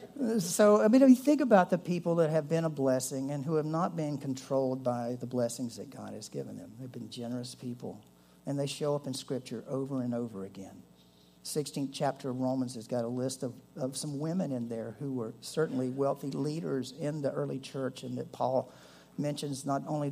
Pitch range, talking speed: 125-160 Hz, 210 wpm